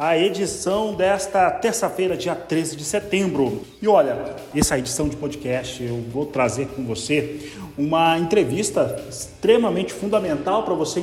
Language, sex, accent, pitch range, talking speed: Portuguese, male, Brazilian, 145-200 Hz, 135 wpm